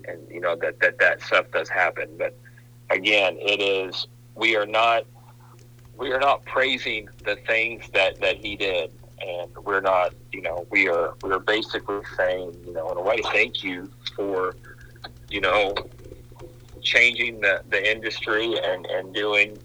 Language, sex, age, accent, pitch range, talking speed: English, male, 40-59, American, 110-120 Hz, 165 wpm